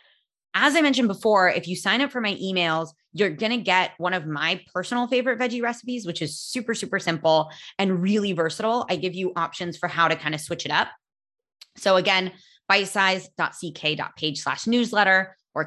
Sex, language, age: female, English, 20-39